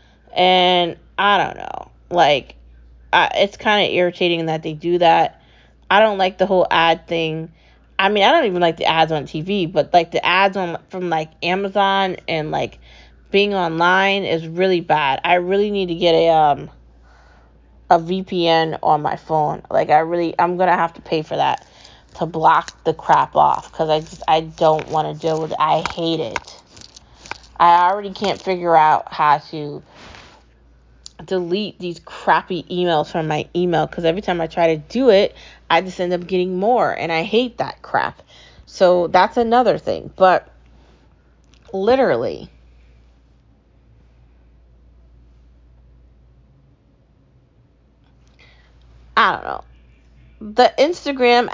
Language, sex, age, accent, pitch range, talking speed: English, female, 20-39, American, 150-195 Hz, 150 wpm